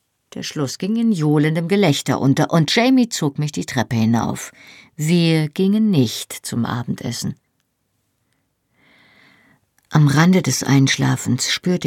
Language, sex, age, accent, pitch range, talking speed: German, female, 50-69, German, 125-155 Hz, 120 wpm